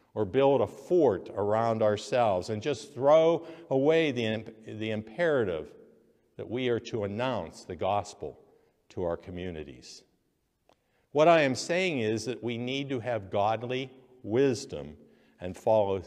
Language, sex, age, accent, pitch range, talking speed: English, male, 60-79, American, 100-130 Hz, 140 wpm